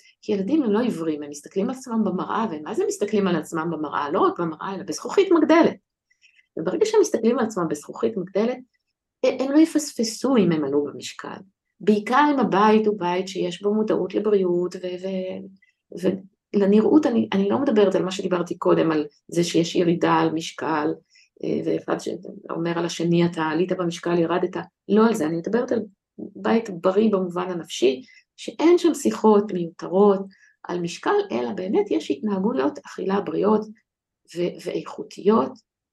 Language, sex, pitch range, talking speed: Hebrew, female, 180-230 Hz, 160 wpm